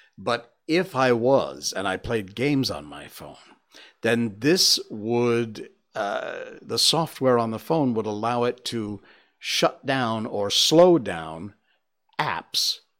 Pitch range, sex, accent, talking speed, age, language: 110-145 Hz, male, American, 140 wpm, 60-79, English